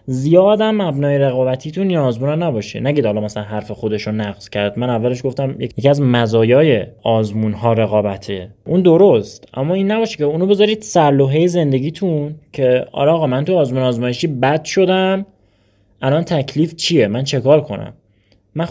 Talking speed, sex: 155 wpm, male